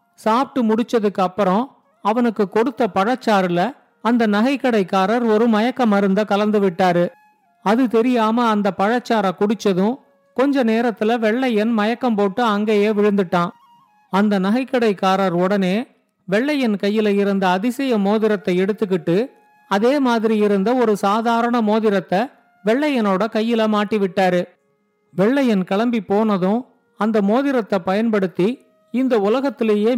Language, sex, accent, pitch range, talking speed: Tamil, male, native, 200-235 Hz, 105 wpm